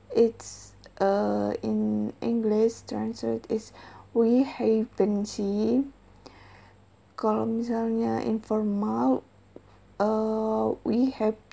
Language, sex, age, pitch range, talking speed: English, female, 20-39, 200-240 Hz, 80 wpm